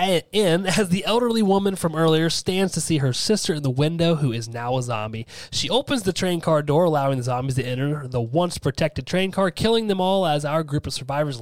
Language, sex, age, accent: English, male, 30-49, American